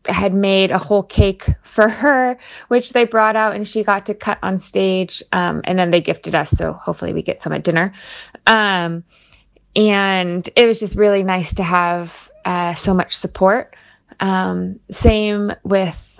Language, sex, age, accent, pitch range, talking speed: English, female, 20-39, American, 175-210 Hz, 175 wpm